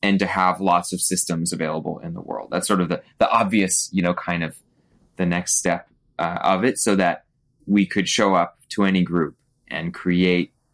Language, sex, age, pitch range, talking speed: English, male, 20-39, 85-100 Hz, 205 wpm